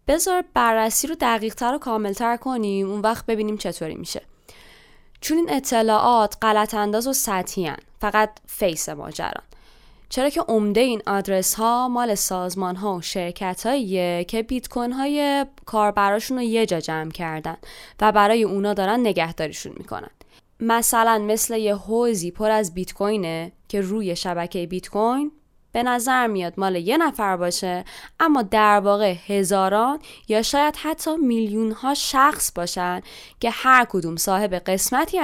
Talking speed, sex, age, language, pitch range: 145 wpm, female, 20-39, Persian, 185-245 Hz